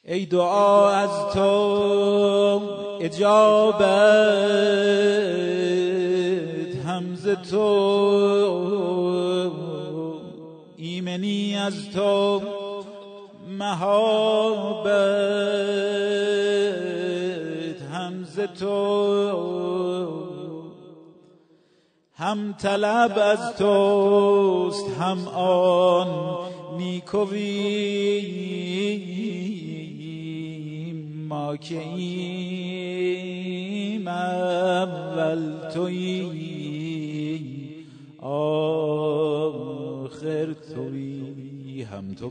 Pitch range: 150-200 Hz